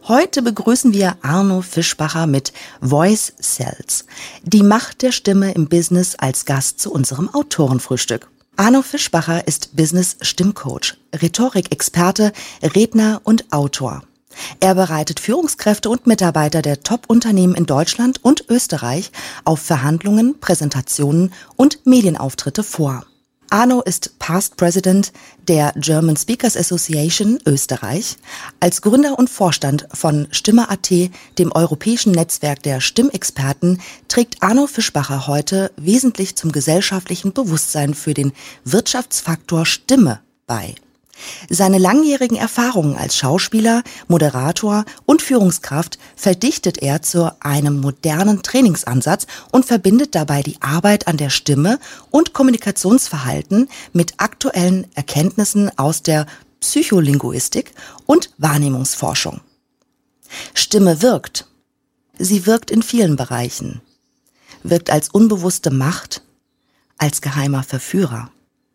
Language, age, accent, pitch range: German, 40-59, German, 150-225 Hz